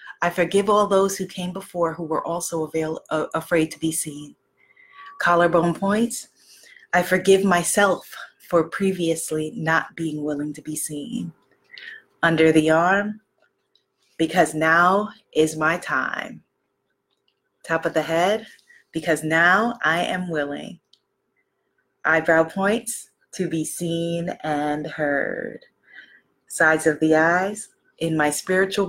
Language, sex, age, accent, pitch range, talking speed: English, female, 30-49, American, 160-200 Hz, 125 wpm